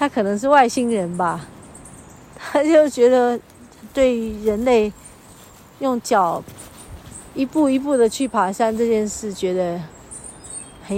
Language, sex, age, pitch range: Chinese, female, 40-59, 185-265 Hz